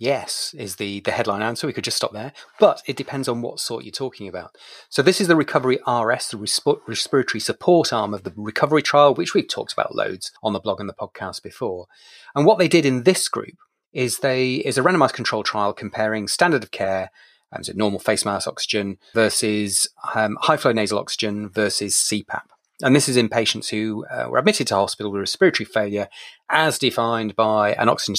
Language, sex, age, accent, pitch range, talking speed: English, male, 30-49, British, 105-145 Hz, 210 wpm